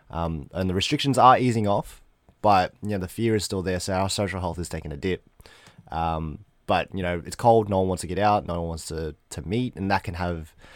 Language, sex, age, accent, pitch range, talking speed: English, male, 20-39, Australian, 85-105 Hz, 250 wpm